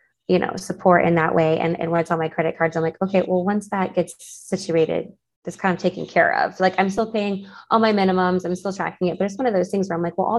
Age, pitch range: 20-39, 165-195 Hz